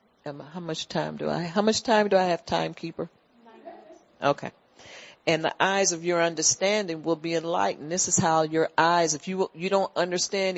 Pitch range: 145-180 Hz